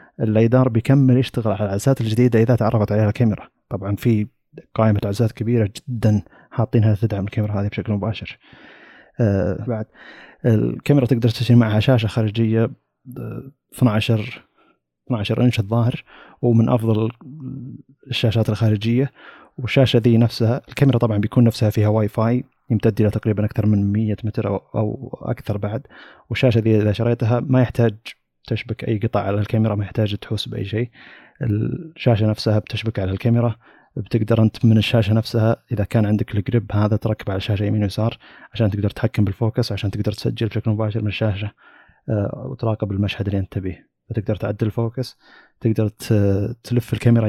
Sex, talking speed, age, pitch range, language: male, 150 wpm, 30-49, 105-120 Hz, Arabic